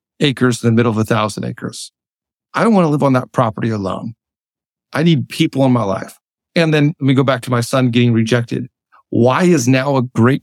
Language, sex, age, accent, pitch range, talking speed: English, male, 50-69, American, 115-140 Hz, 225 wpm